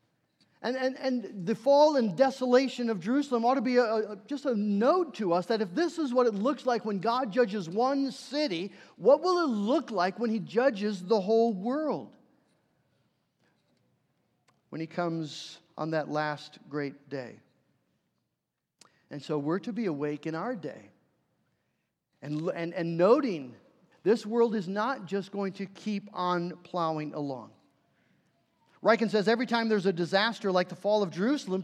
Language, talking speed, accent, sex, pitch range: English, 165 wpm, American, male, 195-265 Hz